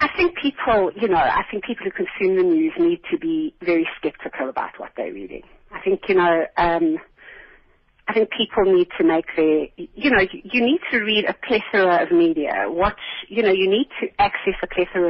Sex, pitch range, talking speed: female, 175-285 Hz, 205 wpm